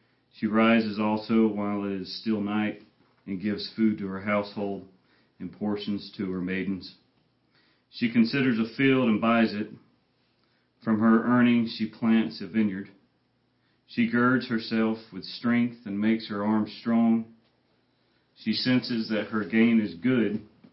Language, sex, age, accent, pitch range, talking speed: English, male, 40-59, American, 105-115 Hz, 145 wpm